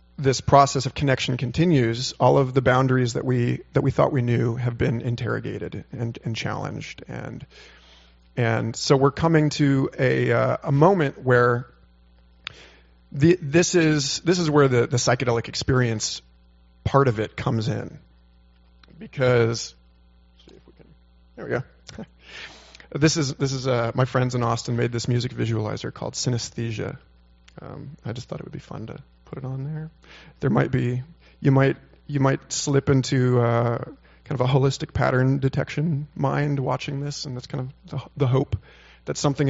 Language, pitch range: English, 110-140 Hz